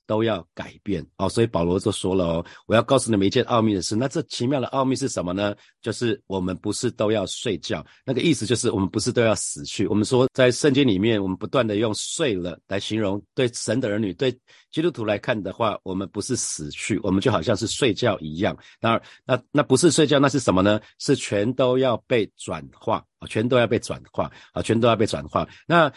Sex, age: male, 40-59